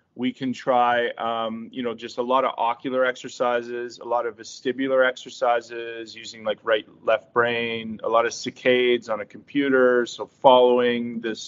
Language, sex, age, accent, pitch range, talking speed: English, male, 30-49, American, 115-135 Hz, 165 wpm